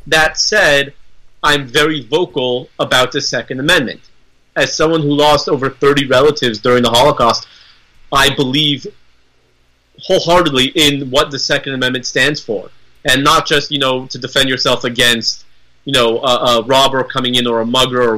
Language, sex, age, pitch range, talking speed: English, male, 30-49, 125-145 Hz, 160 wpm